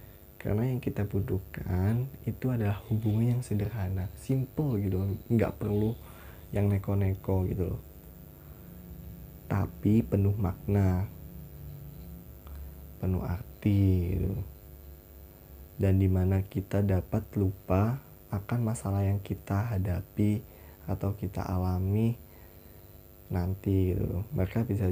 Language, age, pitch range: Indonesian, 20-39, 90-110 Hz